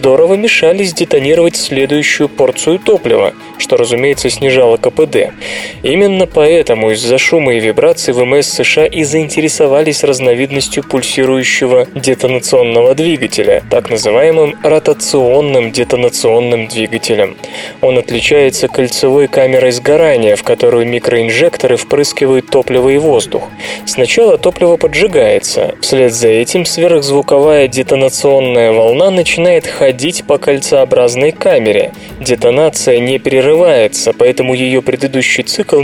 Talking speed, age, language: 105 wpm, 20-39, Russian